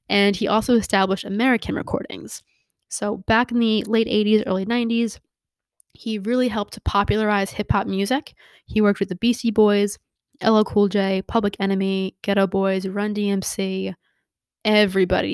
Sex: female